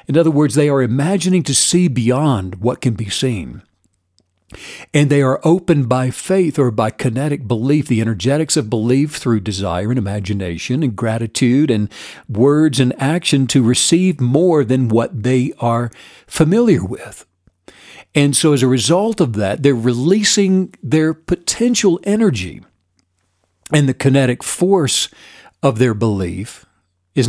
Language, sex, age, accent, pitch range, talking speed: English, male, 60-79, American, 115-160 Hz, 145 wpm